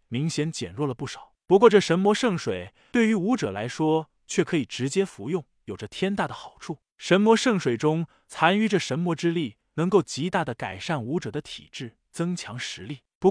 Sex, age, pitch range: male, 20-39, 150-205 Hz